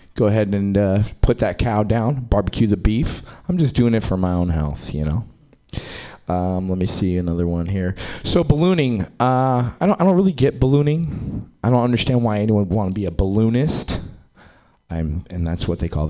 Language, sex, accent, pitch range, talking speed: English, male, American, 90-125 Hz, 205 wpm